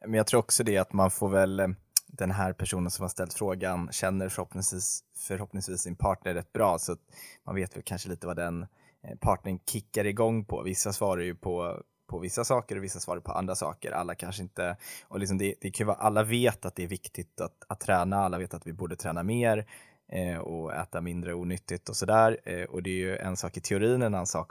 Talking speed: 225 wpm